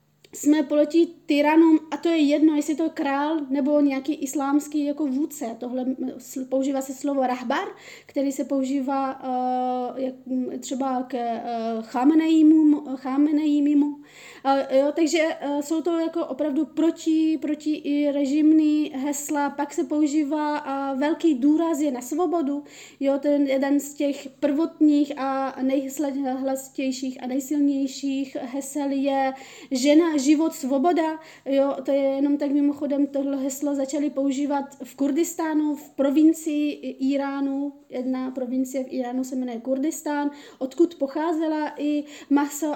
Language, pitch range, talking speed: Czech, 270-300 Hz, 130 wpm